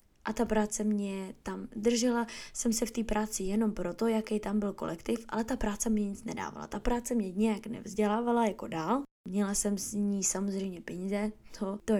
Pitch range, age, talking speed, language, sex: 195-220 Hz, 10-29, 190 wpm, Czech, female